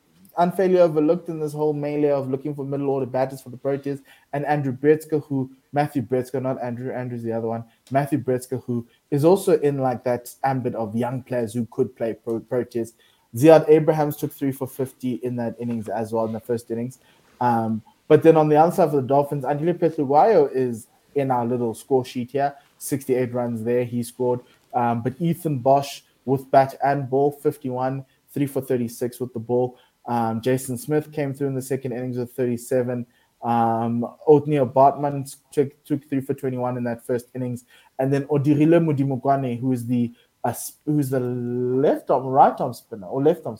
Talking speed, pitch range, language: 185 wpm, 120-145 Hz, English